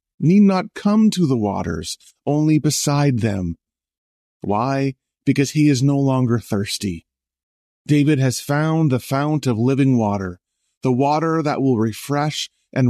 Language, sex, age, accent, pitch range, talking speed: English, male, 30-49, American, 100-145 Hz, 140 wpm